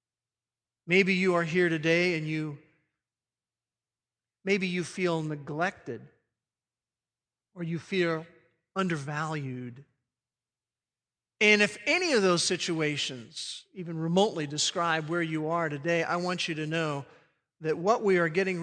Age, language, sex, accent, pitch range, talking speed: 50-69, English, male, American, 155-200 Hz, 120 wpm